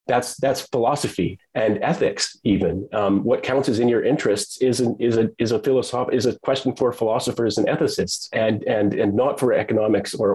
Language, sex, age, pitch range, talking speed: English, male, 30-49, 105-160 Hz, 190 wpm